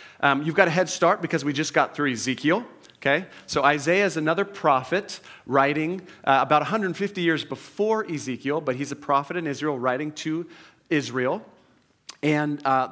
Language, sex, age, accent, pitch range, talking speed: English, male, 40-59, American, 135-165 Hz, 165 wpm